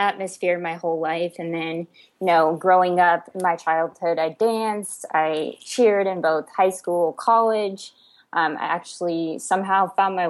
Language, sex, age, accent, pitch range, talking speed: English, female, 20-39, American, 165-195 Hz, 165 wpm